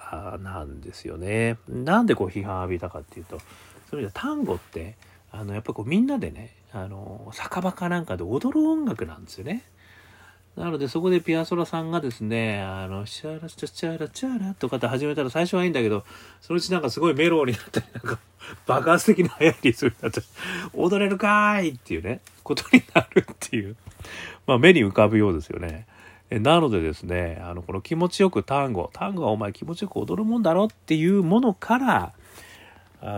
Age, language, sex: 40-59, Japanese, male